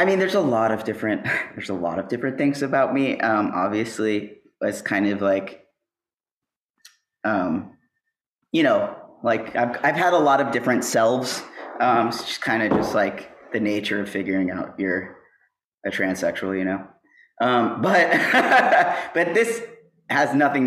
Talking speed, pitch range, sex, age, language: 165 wpm, 105-160 Hz, male, 20-39, English